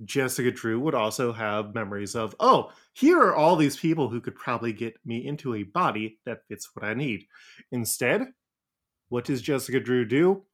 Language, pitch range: English, 115-155 Hz